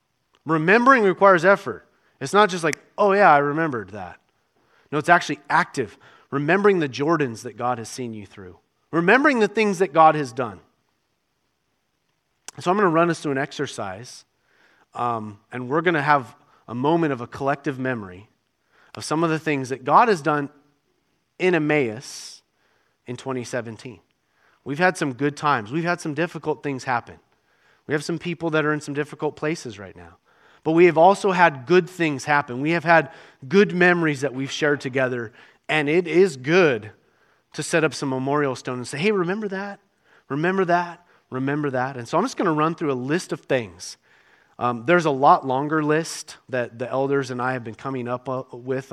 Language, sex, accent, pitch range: English, male, American, 130-170 Hz